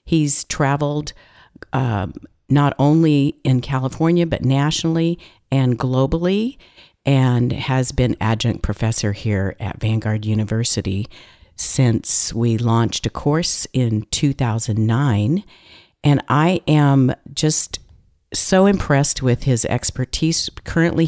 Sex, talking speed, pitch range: female, 105 wpm, 115-145 Hz